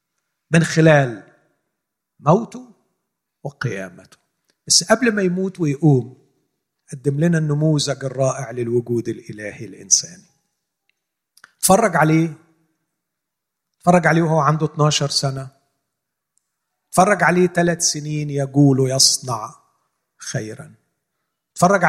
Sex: male